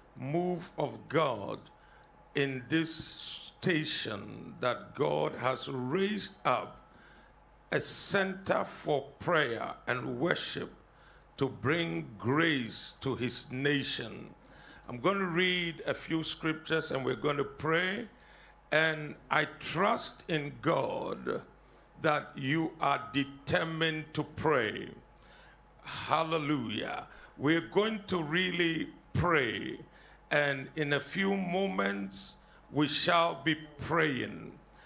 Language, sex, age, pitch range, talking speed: English, male, 50-69, 145-180 Hz, 105 wpm